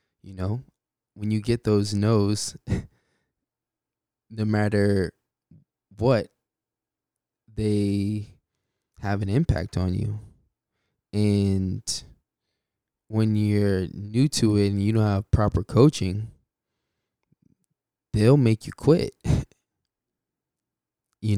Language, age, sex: English, 20-39, male